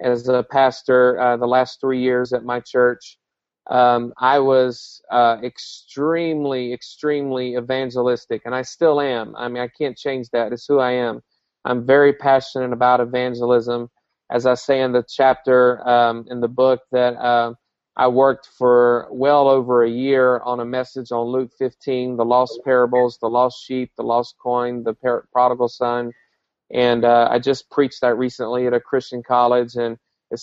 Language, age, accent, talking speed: English, 40-59, American, 170 wpm